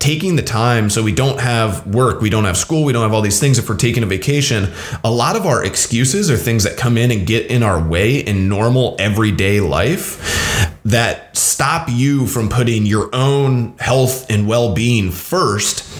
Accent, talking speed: American, 200 wpm